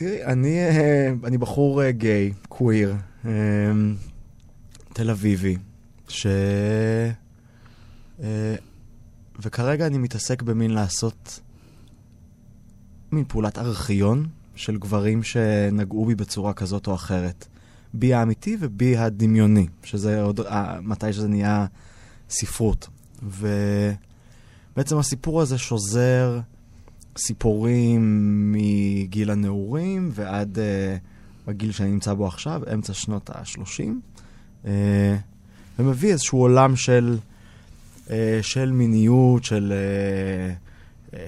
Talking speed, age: 90 wpm, 20-39